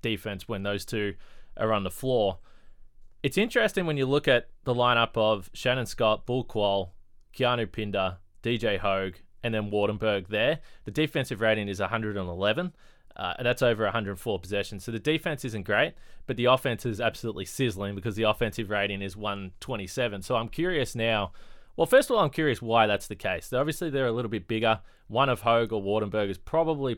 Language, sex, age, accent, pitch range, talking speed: English, male, 20-39, Australian, 100-125 Hz, 190 wpm